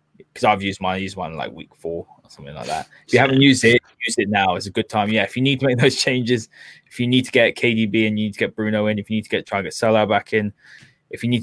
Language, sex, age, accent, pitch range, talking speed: English, male, 10-29, British, 105-130 Hz, 310 wpm